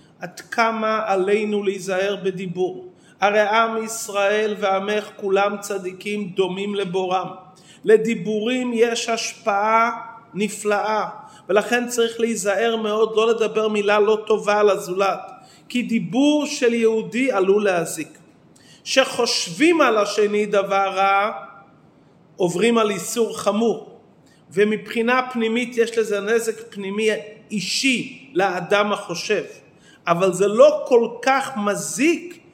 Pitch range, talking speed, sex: 190-230 Hz, 105 wpm, male